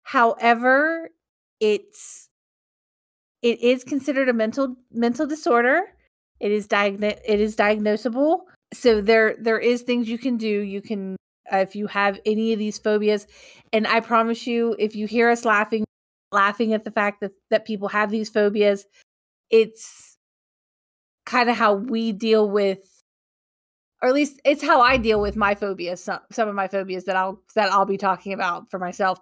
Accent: American